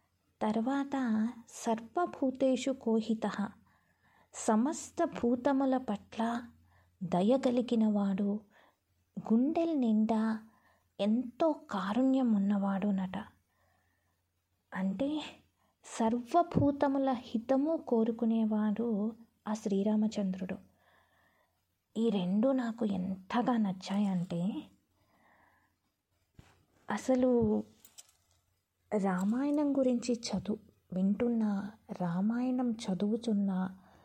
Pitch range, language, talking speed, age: 190-245 Hz, Telugu, 55 wpm, 20-39